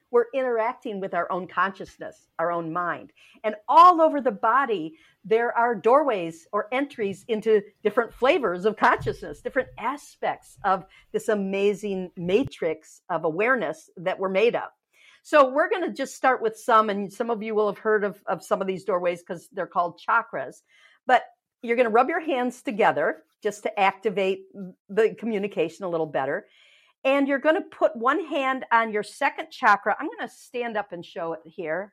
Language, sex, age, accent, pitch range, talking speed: English, female, 50-69, American, 190-260 Hz, 180 wpm